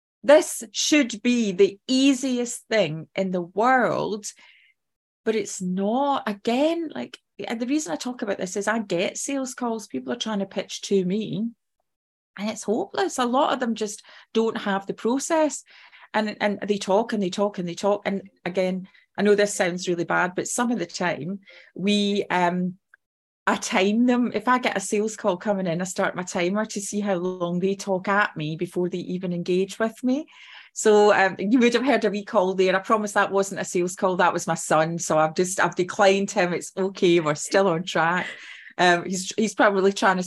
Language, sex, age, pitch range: English, female, 30-49, 185-225 Hz